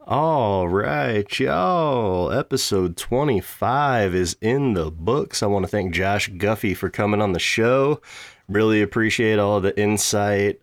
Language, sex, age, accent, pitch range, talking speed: English, male, 20-39, American, 90-115 Hz, 140 wpm